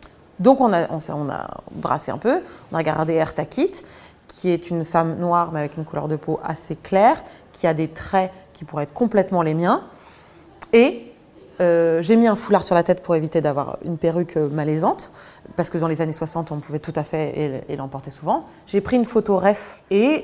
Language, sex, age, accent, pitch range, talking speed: French, female, 20-39, French, 165-210 Hz, 215 wpm